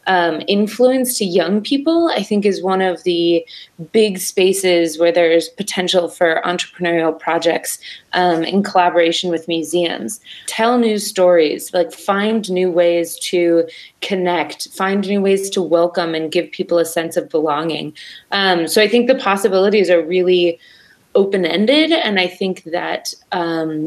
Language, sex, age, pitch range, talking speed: English, female, 20-39, 170-200 Hz, 150 wpm